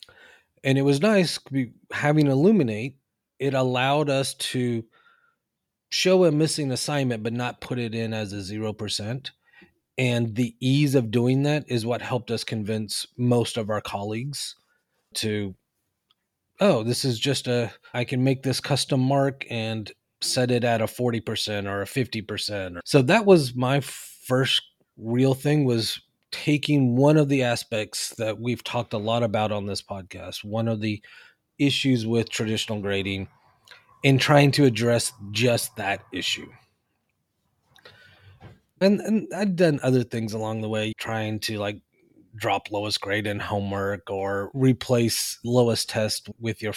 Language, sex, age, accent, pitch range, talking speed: English, male, 30-49, American, 110-135 Hz, 150 wpm